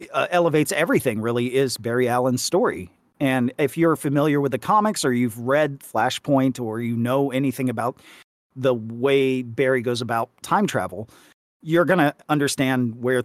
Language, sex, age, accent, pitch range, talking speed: English, male, 40-59, American, 120-165 Hz, 165 wpm